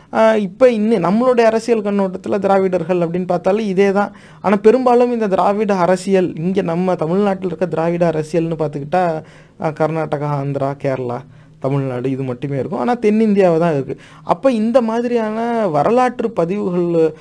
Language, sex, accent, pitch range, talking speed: English, male, Indian, 150-205 Hz, 130 wpm